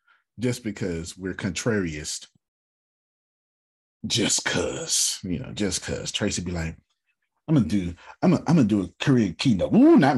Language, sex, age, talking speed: English, male, 30-49, 170 wpm